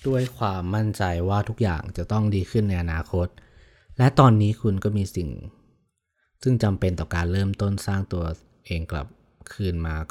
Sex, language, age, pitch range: male, Thai, 20-39, 85-105 Hz